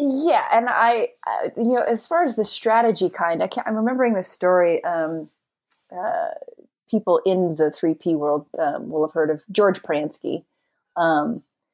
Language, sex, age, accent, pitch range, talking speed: English, female, 30-49, American, 170-235 Hz, 175 wpm